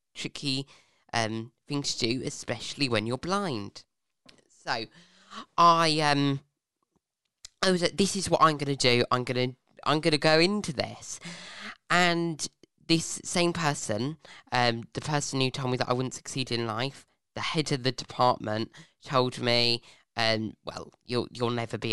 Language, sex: English, female